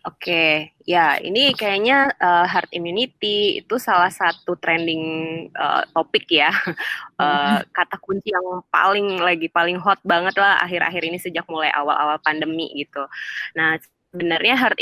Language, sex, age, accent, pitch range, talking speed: Indonesian, female, 20-39, native, 170-210 Hz, 140 wpm